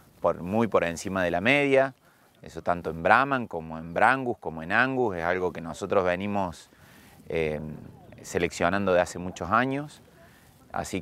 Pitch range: 90-125 Hz